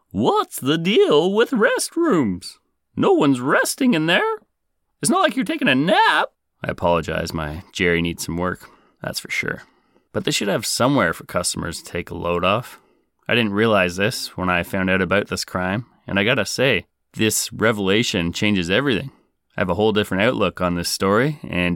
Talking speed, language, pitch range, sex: 190 wpm, English, 90-110 Hz, male